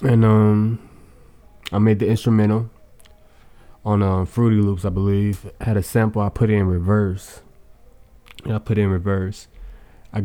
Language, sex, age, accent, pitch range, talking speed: English, male, 20-39, American, 95-110 Hz, 160 wpm